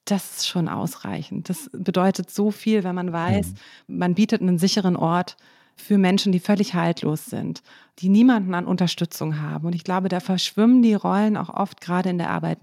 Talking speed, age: 190 wpm, 30-49